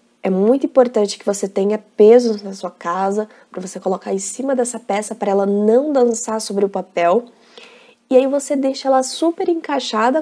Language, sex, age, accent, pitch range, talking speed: Portuguese, female, 20-39, Brazilian, 215-270 Hz, 180 wpm